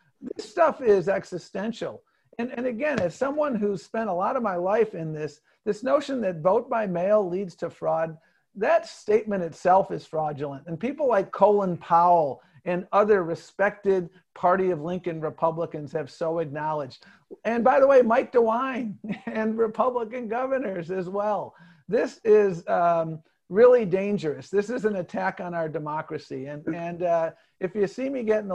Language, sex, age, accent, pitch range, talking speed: English, male, 50-69, American, 165-215 Hz, 165 wpm